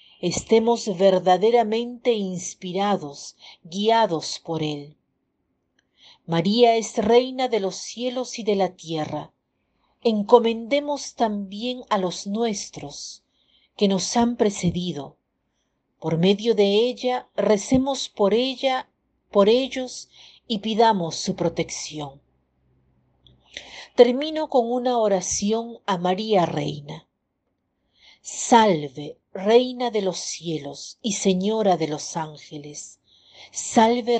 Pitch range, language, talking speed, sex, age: 160-230 Hz, Spanish, 100 wpm, female, 50-69